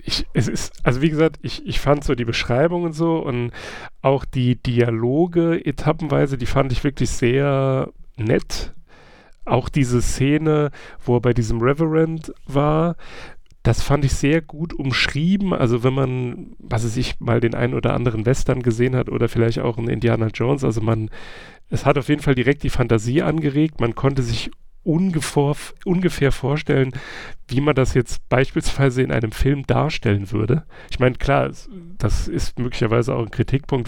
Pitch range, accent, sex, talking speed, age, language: 120-145 Hz, German, male, 165 wpm, 40-59, German